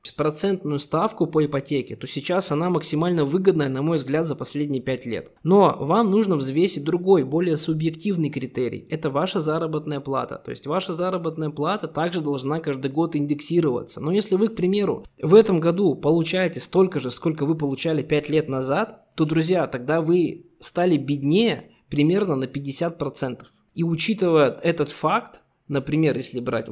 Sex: male